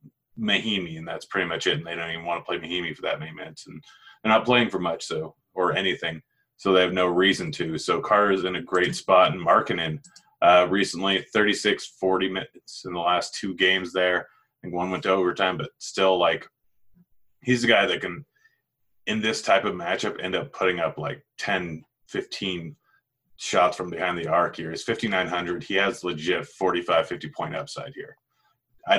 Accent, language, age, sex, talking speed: American, English, 30-49, male, 205 wpm